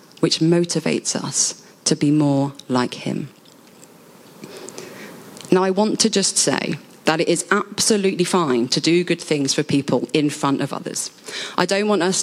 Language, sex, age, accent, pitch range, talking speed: English, female, 30-49, British, 155-185 Hz, 160 wpm